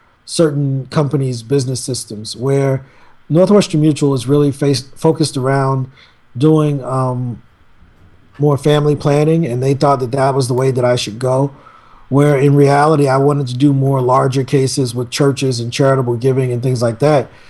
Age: 40-59